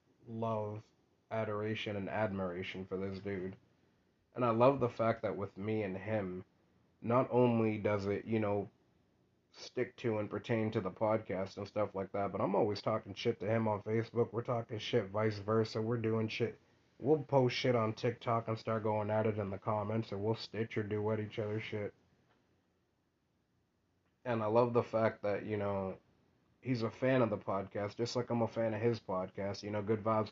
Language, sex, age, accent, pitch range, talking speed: English, male, 30-49, American, 105-115 Hz, 195 wpm